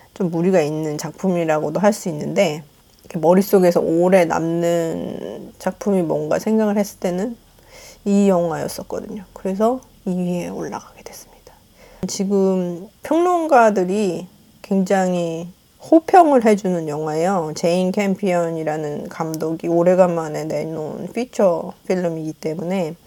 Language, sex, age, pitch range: Korean, female, 40-59, 170-220 Hz